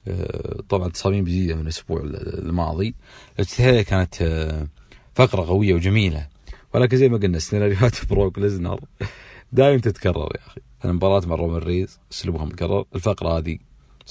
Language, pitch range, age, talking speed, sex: English, 85-110 Hz, 40-59, 140 wpm, male